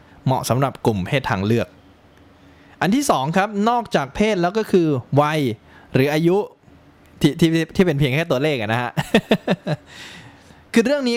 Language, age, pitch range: Thai, 20-39, 120-185 Hz